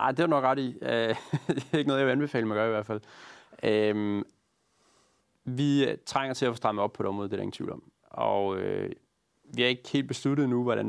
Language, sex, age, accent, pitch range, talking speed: Danish, male, 30-49, native, 105-125 Hz, 235 wpm